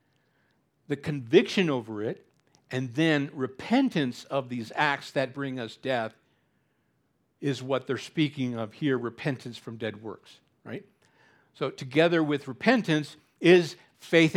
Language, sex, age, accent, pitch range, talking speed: English, male, 60-79, American, 130-170 Hz, 130 wpm